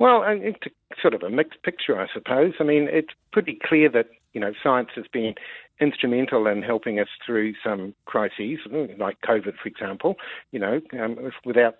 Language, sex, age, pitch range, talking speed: English, male, 50-69, 120-150 Hz, 180 wpm